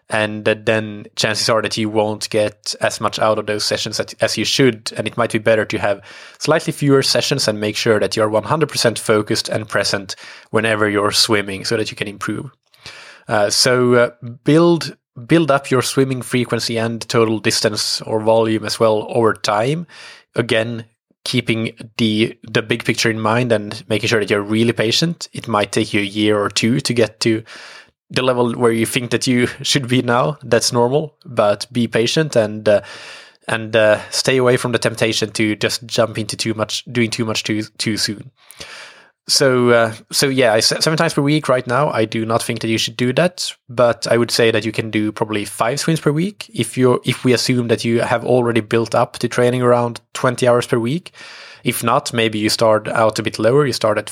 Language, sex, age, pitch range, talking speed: English, male, 20-39, 110-125 Hz, 205 wpm